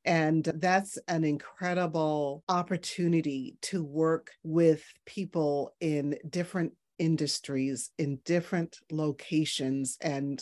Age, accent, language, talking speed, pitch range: 40-59, American, English, 90 wpm, 145-175 Hz